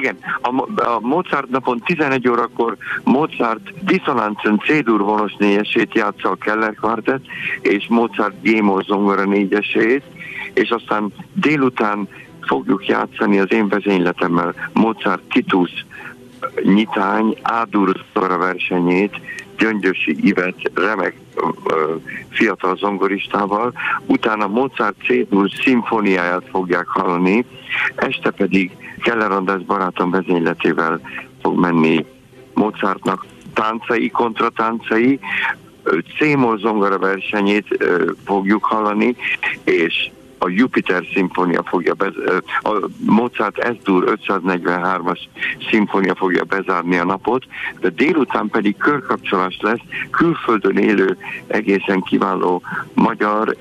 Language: Hungarian